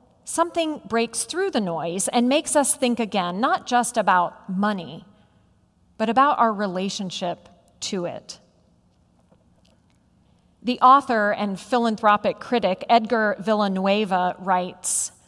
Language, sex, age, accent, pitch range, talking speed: English, female, 40-59, American, 195-265 Hz, 110 wpm